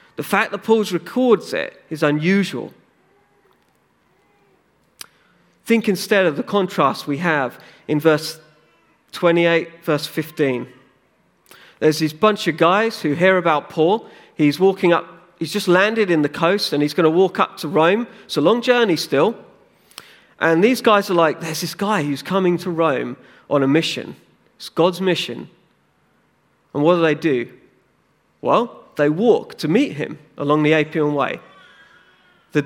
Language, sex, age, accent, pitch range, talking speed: English, male, 40-59, British, 150-200 Hz, 155 wpm